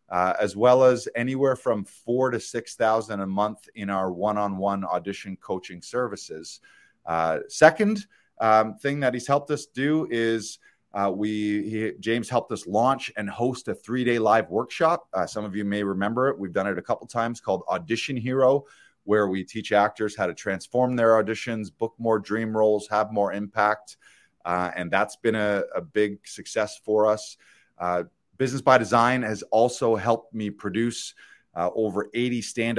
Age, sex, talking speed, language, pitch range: 30-49, male, 180 wpm, English, 100-120 Hz